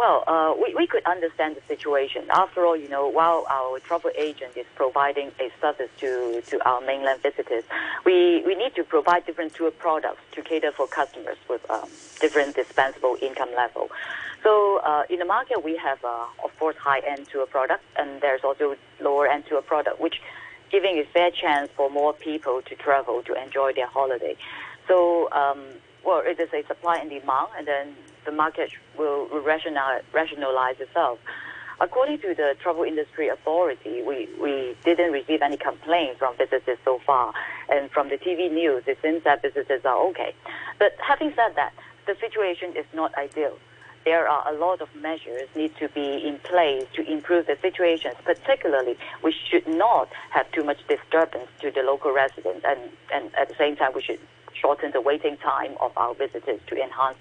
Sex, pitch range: female, 140-175 Hz